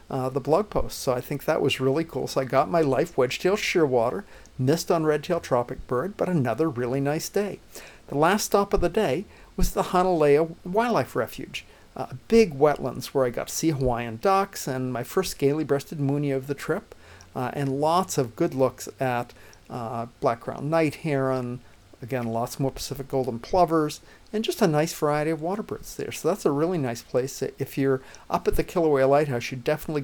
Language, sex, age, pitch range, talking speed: English, male, 50-69, 130-165 Hz, 205 wpm